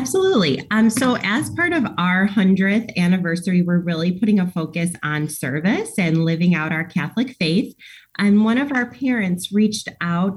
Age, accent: 30-49, American